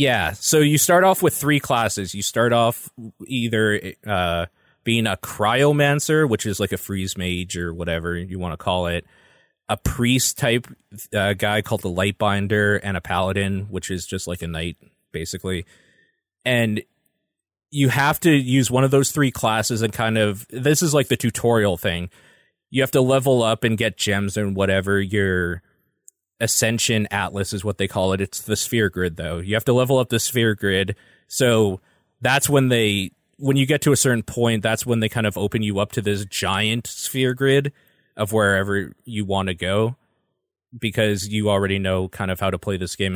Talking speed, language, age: 190 wpm, English, 20-39